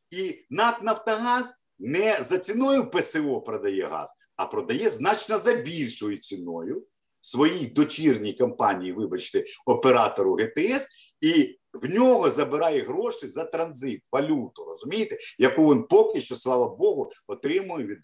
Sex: male